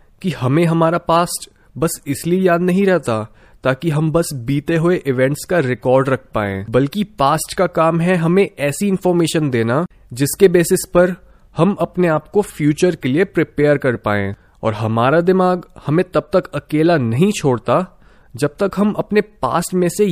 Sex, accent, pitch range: male, native, 140-185 Hz